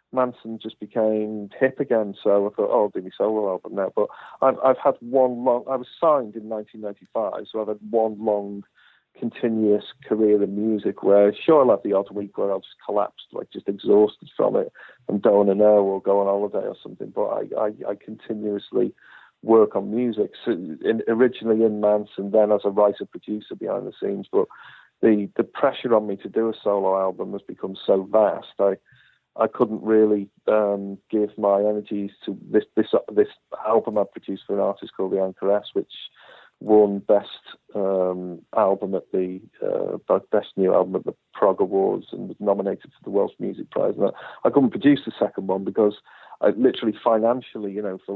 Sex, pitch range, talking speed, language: male, 100-115 Hz, 195 wpm, English